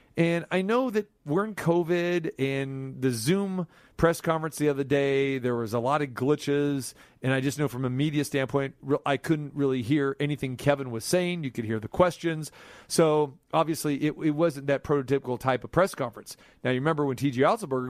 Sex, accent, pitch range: male, American, 145-200 Hz